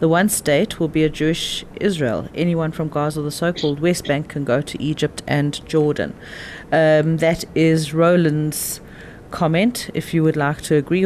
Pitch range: 150-175 Hz